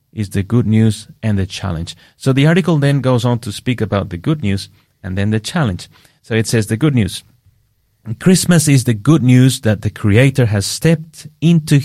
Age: 30-49